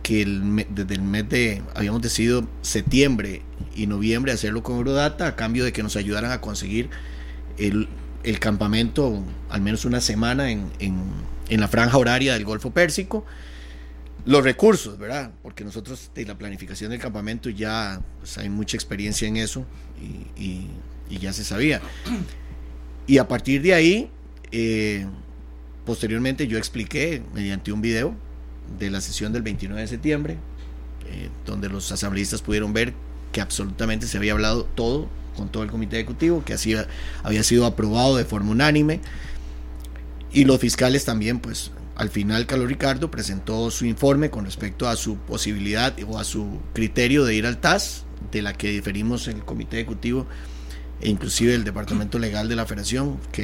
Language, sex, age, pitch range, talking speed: Spanish, male, 30-49, 95-120 Hz, 165 wpm